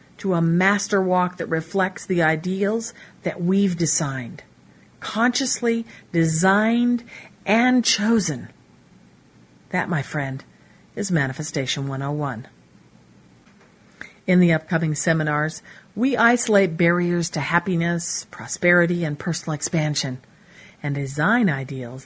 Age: 50-69